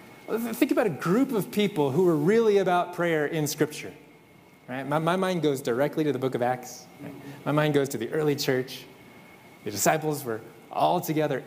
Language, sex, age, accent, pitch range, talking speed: English, male, 20-39, American, 150-235 Hz, 195 wpm